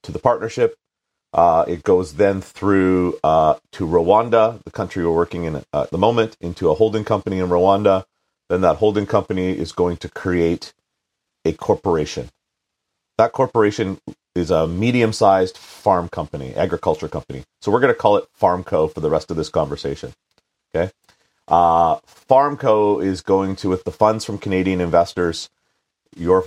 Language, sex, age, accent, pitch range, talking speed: English, male, 40-59, American, 90-105 Hz, 155 wpm